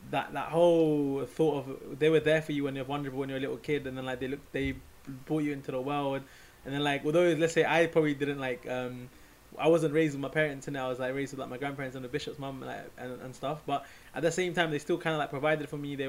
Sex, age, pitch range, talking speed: male, 20-39, 135-155 Hz, 295 wpm